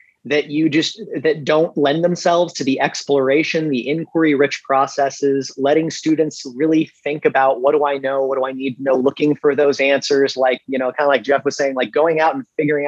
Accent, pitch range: American, 135-160 Hz